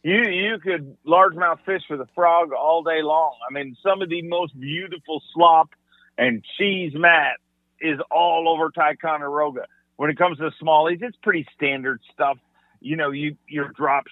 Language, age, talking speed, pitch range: English, 40-59, 170 wpm, 145-180 Hz